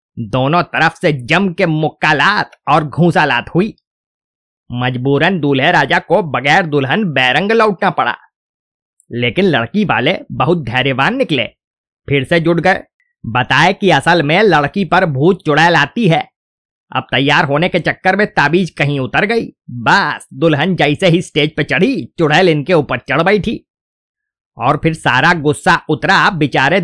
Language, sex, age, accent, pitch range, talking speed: Hindi, male, 30-49, native, 140-180 Hz, 135 wpm